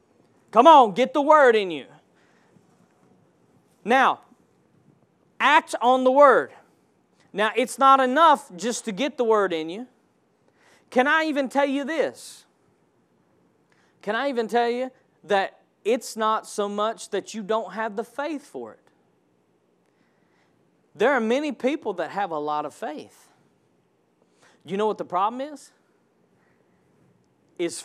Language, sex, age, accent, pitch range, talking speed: English, male, 40-59, American, 190-260 Hz, 140 wpm